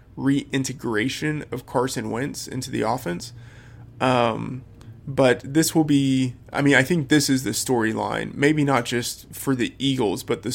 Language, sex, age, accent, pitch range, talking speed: English, male, 20-39, American, 115-135 Hz, 150 wpm